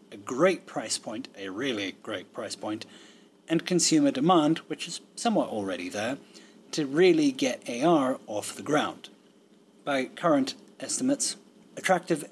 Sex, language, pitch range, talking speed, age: male, English, 130-180 Hz, 135 wpm, 30-49